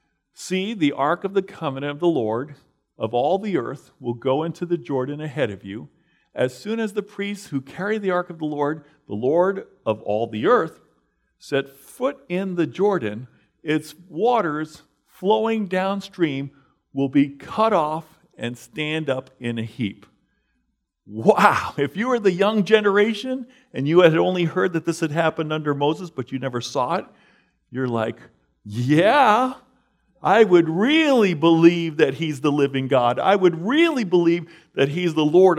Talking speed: 170 wpm